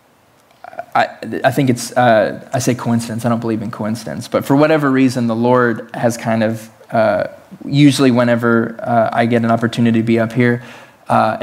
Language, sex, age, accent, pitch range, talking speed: English, male, 20-39, American, 115-145 Hz, 185 wpm